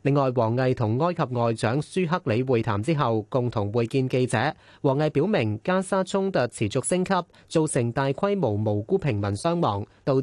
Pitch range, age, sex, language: 120-165 Hz, 30-49, male, Chinese